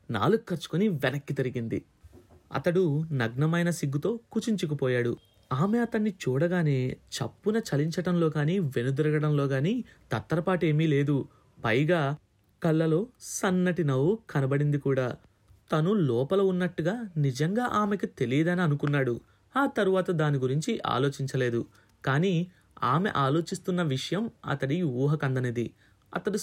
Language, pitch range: Telugu, 125-180 Hz